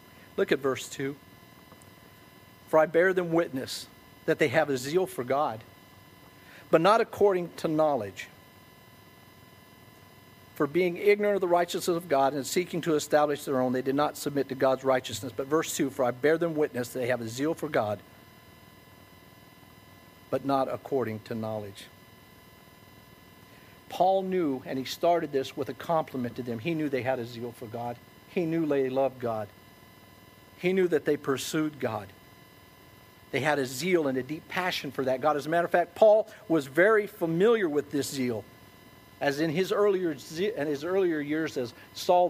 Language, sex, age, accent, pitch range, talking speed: English, male, 50-69, American, 130-175 Hz, 180 wpm